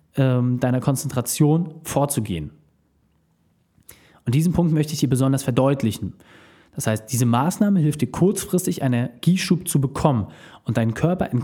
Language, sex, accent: German, male, German